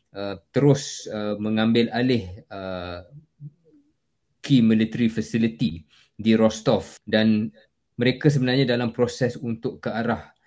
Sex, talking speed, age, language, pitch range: male, 110 wpm, 20-39, Malay, 105-120 Hz